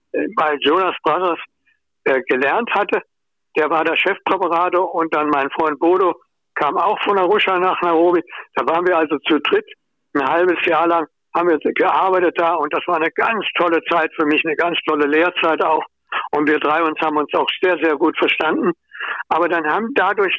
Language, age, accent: German, 60-79, German